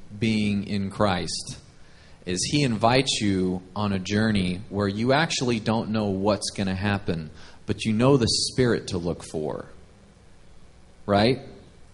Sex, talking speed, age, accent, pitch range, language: male, 140 wpm, 30-49, American, 95-125 Hz, English